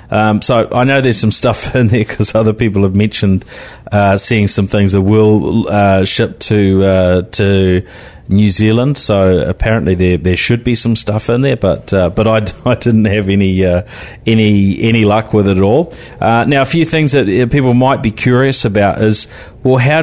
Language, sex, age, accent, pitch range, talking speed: English, male, 30-49, Australian, 95-115 Hz, 200 wpm